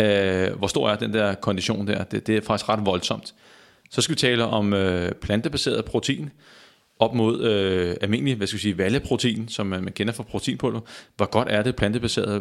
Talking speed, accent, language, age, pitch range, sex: 200 wpm, native, Danish, 30-49, 100-125 Hz, male